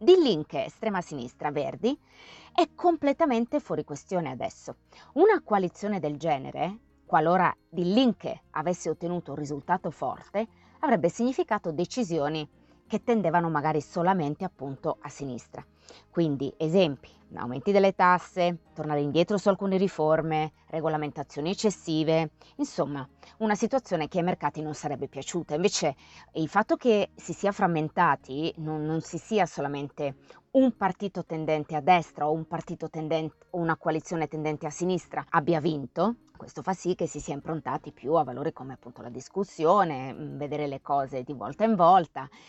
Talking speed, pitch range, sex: 140 wpm, 145-180 Hz, female